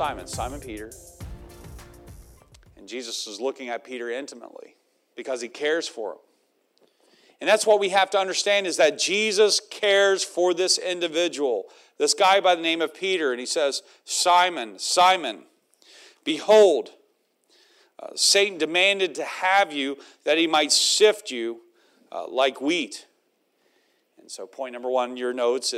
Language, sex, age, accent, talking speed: English, male, 40-59, American, 150 wpm